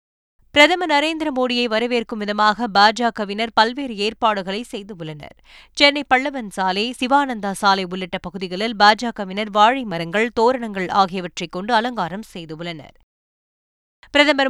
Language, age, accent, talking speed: Tamil, 20-39, native, 95 wpm